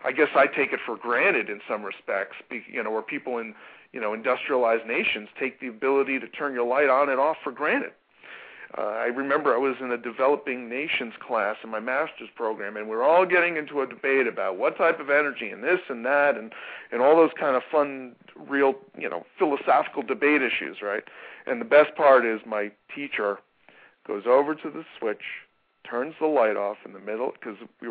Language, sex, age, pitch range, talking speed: English, male, 40-59, 120-165 Hz, 210 wpm